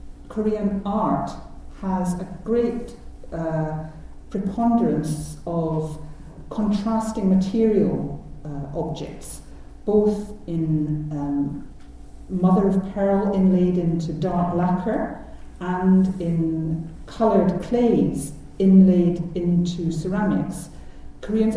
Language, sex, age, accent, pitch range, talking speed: English, female, 50-69, British, 155-195 Hz, 80 wpm